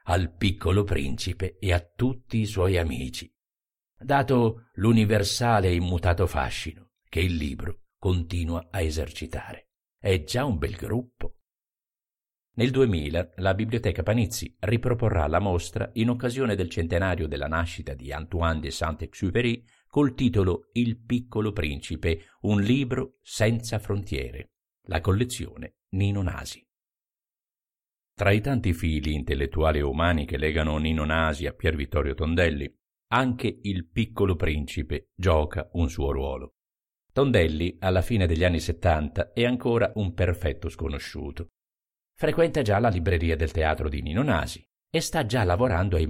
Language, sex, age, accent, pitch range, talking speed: Italian, male, 50-69, native, 80-105 Hz, 135 wpm